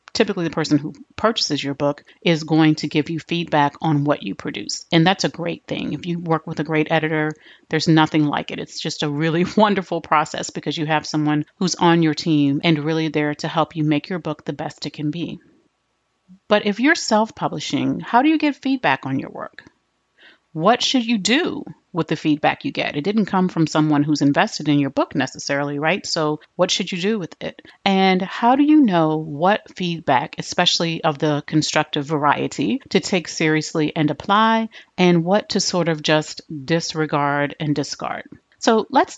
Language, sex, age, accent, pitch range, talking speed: English, female, 40-59, American, 155-190 Hz, 200 wpm